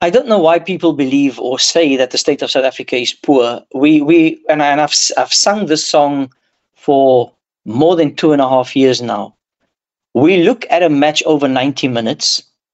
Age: 50-69